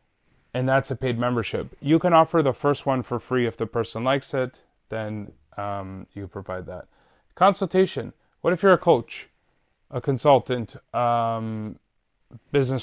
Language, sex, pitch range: English, male, 110-145 Hz